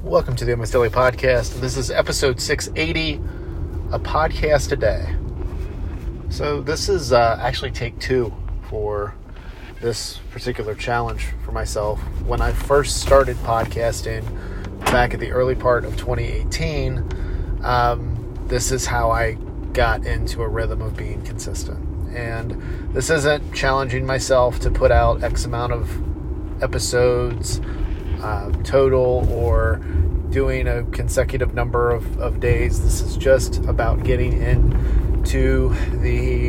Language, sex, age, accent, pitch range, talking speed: English, male, 40-59, American, 80-120 Hz, 130 wpm